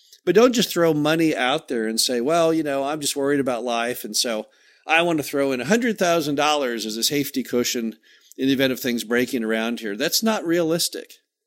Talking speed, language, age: 210 wpm, English, 50-69